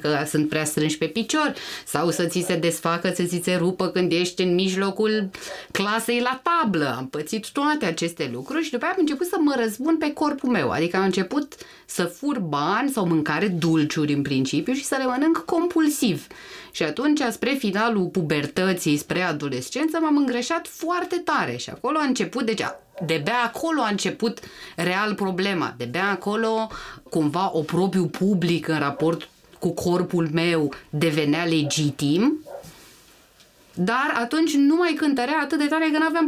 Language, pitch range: Romanian, 170-270 Hz